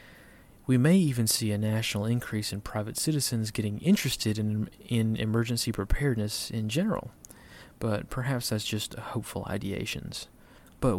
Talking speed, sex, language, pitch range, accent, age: 135 wpm, male, English, 105-120 Hz, American, 30-49